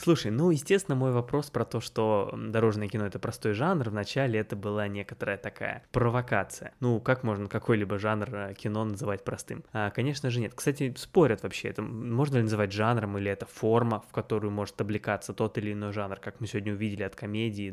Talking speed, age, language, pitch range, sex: 195 wpm, 20-39, Russian, 105-120 Hz, male